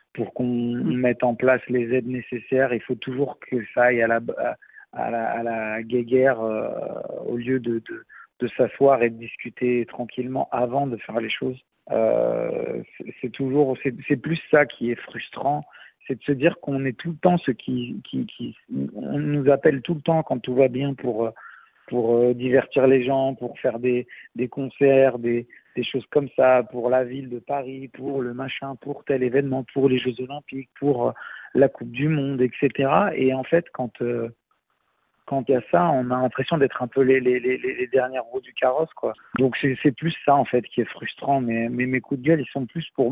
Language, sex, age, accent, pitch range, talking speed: French, male, 50-69, French, 120-140 Hz, 210 wpm